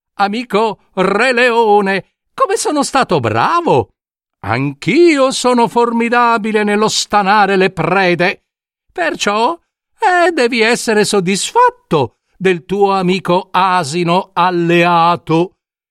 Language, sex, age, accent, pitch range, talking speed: Italian, male, 50-69, native, 140-220 Hz, 90 wpm